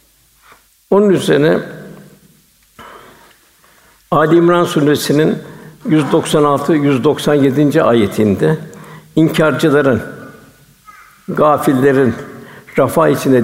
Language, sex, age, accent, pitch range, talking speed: Turkish, male, 60-79, native, 140-170 Hz, 55 wpm